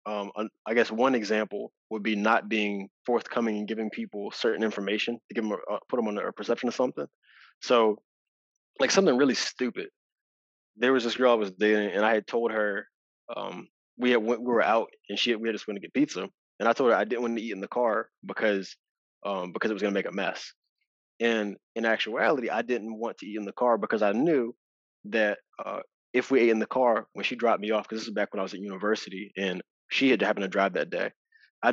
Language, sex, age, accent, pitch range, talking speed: English, male, 20-39, American, 100-120 Hz, 240 wpm